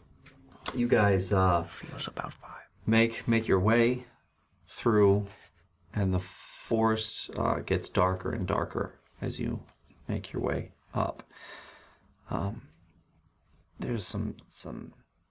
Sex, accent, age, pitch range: male, American, 30-49, 90-100 Hz